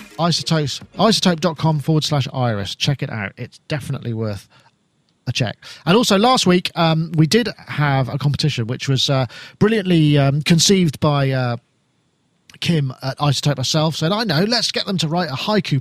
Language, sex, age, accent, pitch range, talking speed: English, male, 40-59, British, 135-180 Hz, 170 wpm